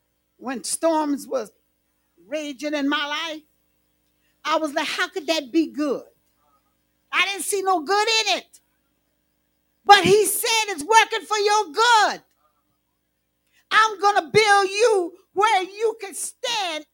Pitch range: 250-355 Hz